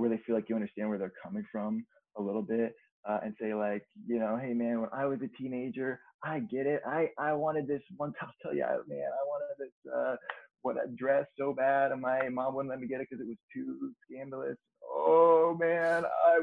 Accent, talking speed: American, 235 wpm